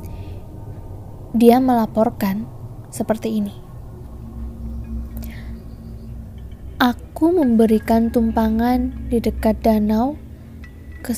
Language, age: Indonesian, 20-39